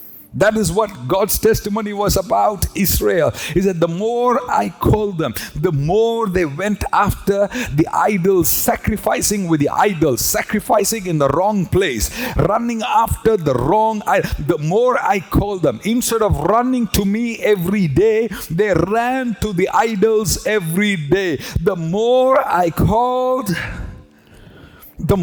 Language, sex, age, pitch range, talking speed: English, male, 50-69, 170-230 Hz, 145 wpm